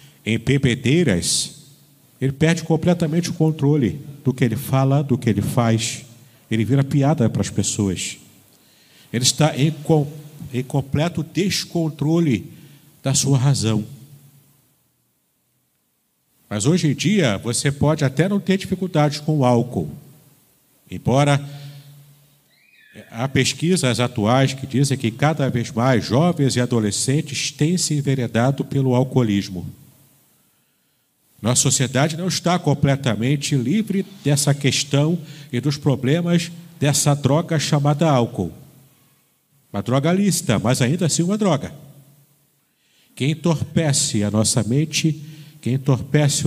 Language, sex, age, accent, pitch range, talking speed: Portuguese, male, 50-69, Brazilian, 130-155 Hz, 120 wpm